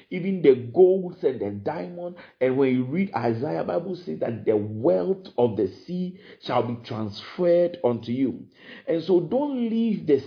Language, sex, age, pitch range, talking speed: English, male, 50-69, 125-190 Hz, 175 wpm